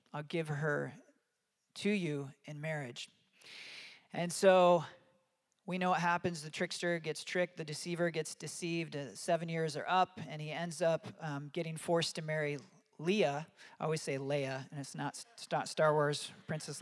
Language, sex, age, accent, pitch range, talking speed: English, male, 40-59, American, 150-180 Hz, 165 wpm